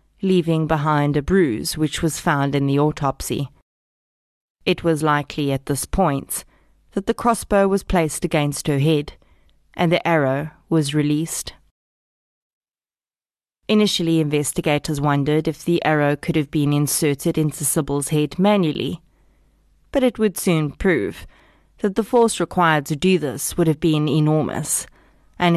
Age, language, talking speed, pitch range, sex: 20-39, English, 140 wpm, 140-175 Hz, female